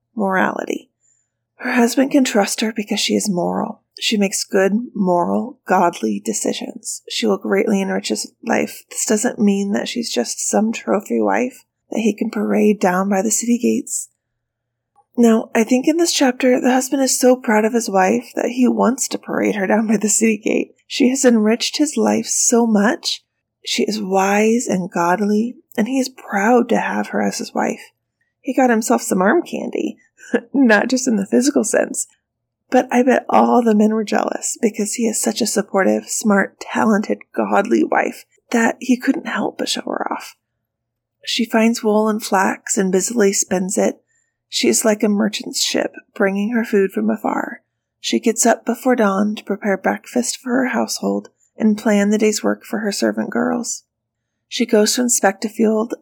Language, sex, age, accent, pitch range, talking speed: English, female, 20-39, American, 195-245 Hz, 185 wpm